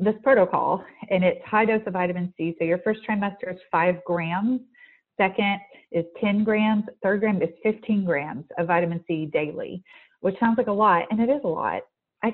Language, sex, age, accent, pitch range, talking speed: English, female, 30-49, American, 175-225 Hz, 195 wpm